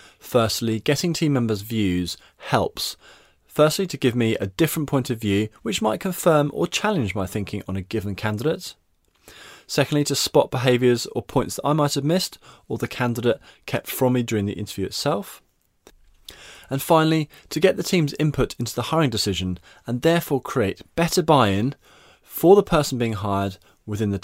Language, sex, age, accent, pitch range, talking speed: English, male, 20-39, British, 95-145 Hz, 175 wpm